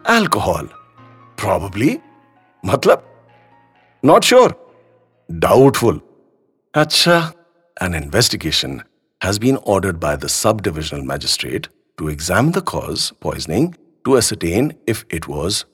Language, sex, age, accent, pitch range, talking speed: English, male, 50-69, Indian, 95-155 Hz, 100 wpm